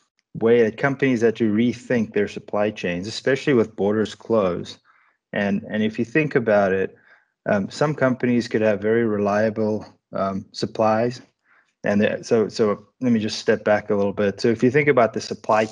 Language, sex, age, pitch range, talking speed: English, male, 20-39, 100-115 Hz, 180 wpm